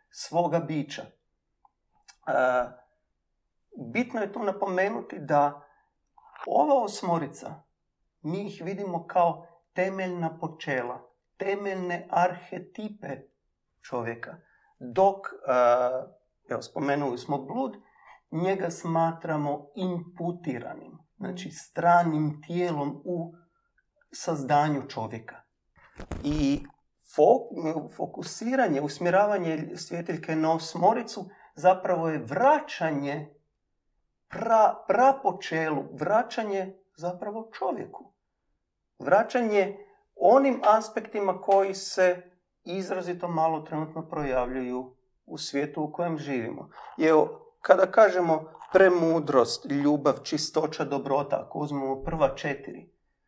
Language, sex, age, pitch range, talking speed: Croatian, male, 50-69, 145-190 Hz, 80 wpm